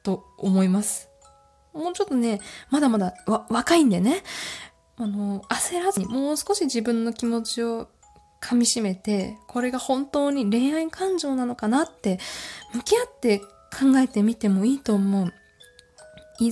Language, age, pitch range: Japanese, 20-39, 185-255 Hz